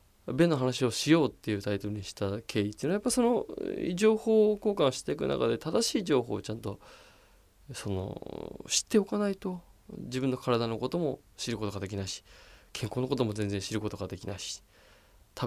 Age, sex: 20-39, male